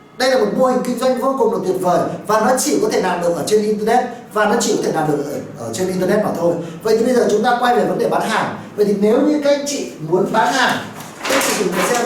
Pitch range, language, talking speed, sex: 195-250 Hz, Vietnamese, 310 wpm, male